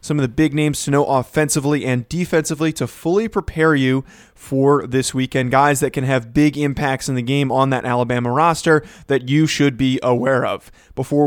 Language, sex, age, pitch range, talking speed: English, male, 20-39, 130-155 Hz, 195 wpm